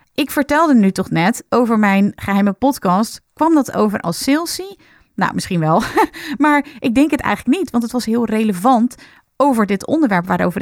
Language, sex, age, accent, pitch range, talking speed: Dutch, female, 30-49, Dutch, 190-265 Hz, 180 wpm